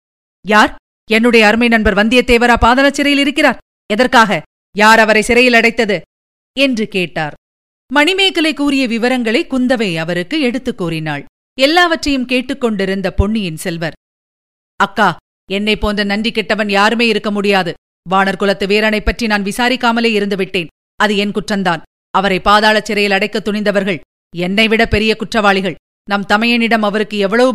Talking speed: 120 wpm